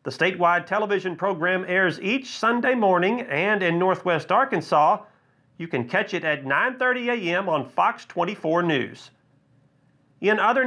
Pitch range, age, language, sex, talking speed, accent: 165-215 Hz, 40-59, English, male, 140 wpm, American